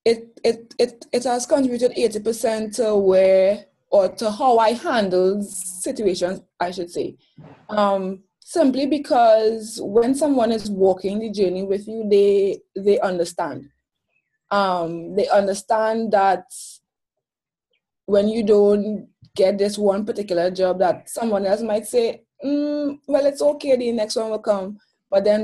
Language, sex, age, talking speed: English, female, 20-39, 145 wpm